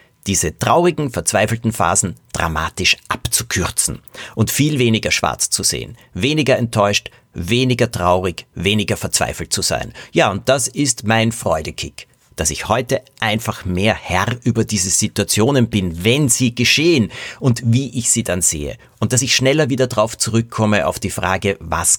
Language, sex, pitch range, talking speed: German, male, 100-130 Hz, 155 wpm